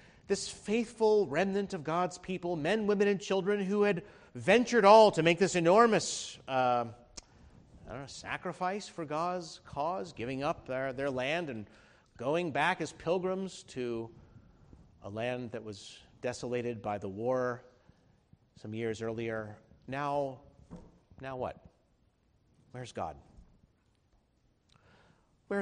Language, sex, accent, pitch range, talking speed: English, male, American, 115-180 Hz, 120 wpm